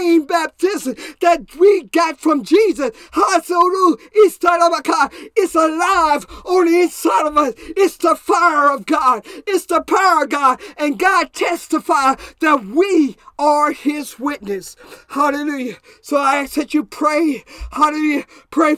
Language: English